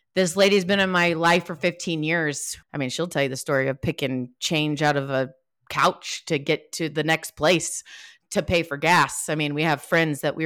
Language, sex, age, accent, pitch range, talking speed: English, female, 30-49, American, 140-175 Hz, 235 wpm